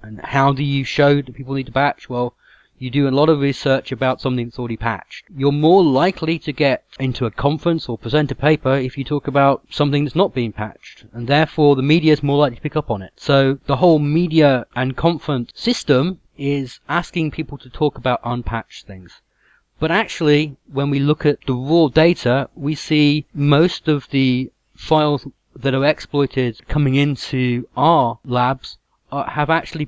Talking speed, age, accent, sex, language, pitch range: 190 wpm, 30-49, British, male, English, 125-150 Hz